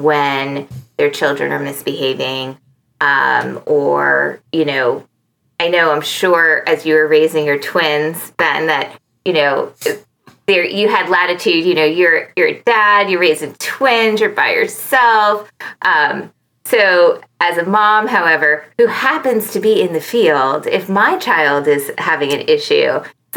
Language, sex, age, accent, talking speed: English, female, 20-39, American, 155 wpm